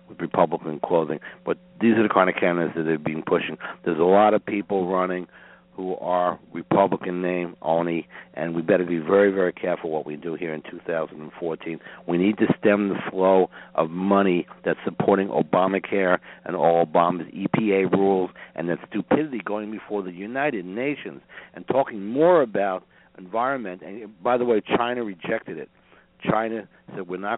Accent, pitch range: American, 85-100 Hz